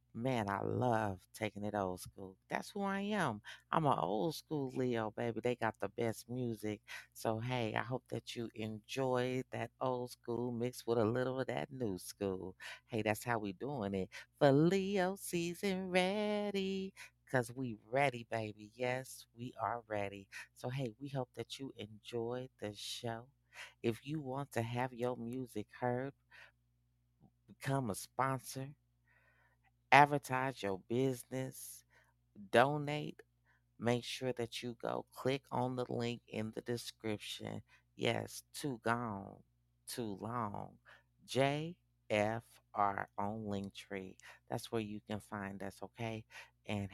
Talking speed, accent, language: 140 wpm, American, English